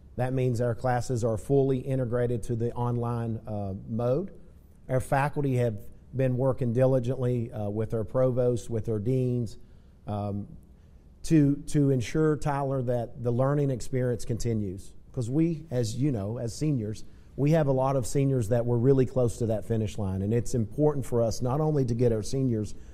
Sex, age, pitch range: male, 40-59, 110-130 Hz